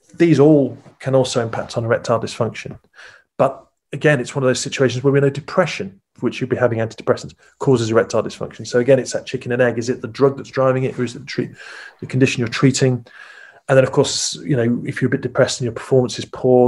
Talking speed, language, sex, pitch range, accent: 235 wpm, English, male, 125-145 Hz, British